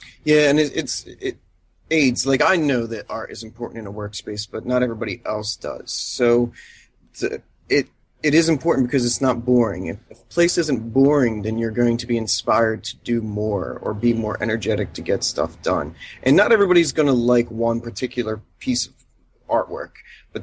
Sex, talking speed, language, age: male, 185 wpm, English, 30-49